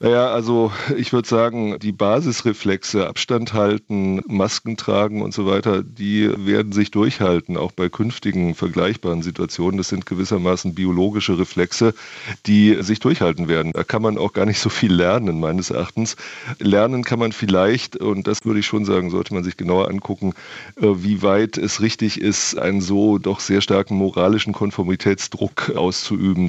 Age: 30-49